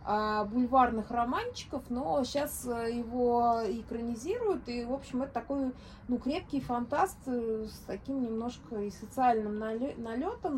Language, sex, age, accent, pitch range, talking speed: Russian, female, 20-39, native, 220-275 Hz, 115 wpm